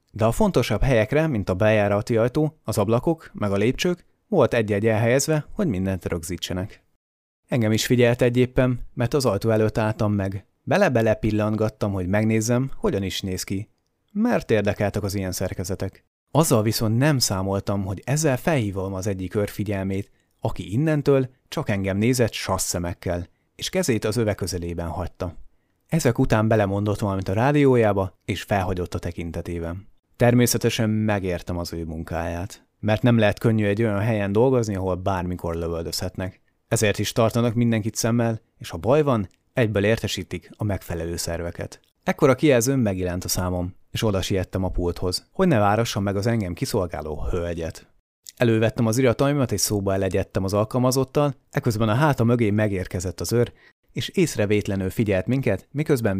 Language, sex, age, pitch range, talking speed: Hungarian, male, 30-49, 95-120 Hz, 150 wpm